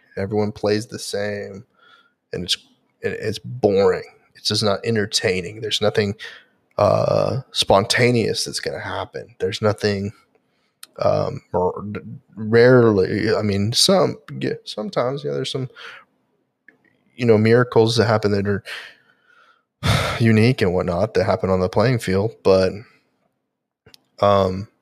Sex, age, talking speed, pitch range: male, 20-39, 120 wpm, 100-125 Hz